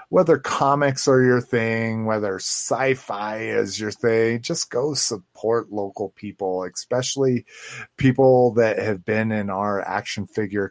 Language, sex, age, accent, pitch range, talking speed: English, male, 30-49, American, 95-120 Hz, 135 wpm